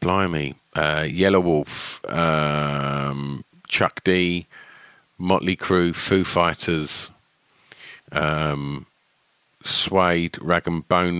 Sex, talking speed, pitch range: male, 85 wpm, 80-95 Hz